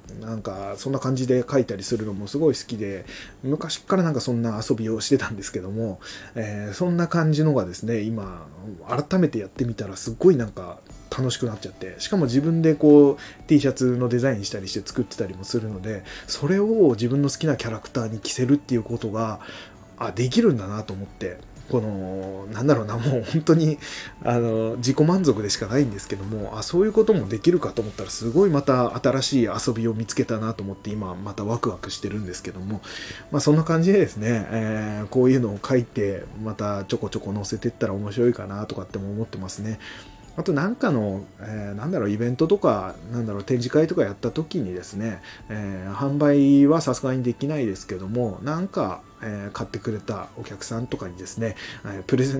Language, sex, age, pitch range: Japanese, male, 20-39, 100-135 Hz